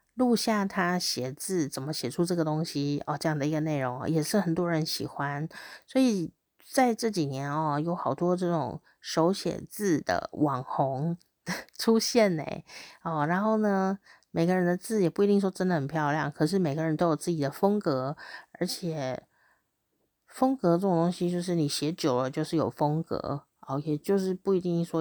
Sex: female